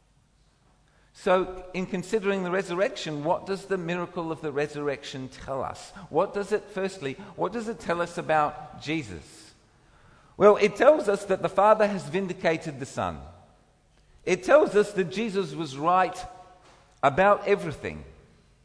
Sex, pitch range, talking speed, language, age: male, 140-195 Hz, 145 wpm, English, 50-69